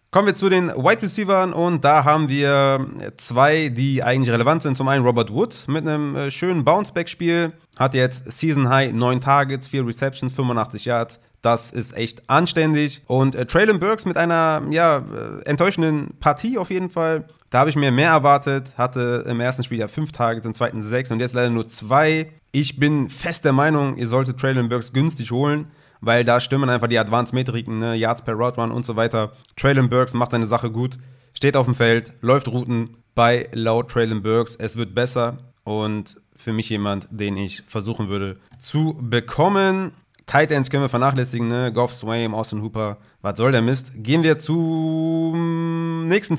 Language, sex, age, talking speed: German, male, 30-49, 185 wpm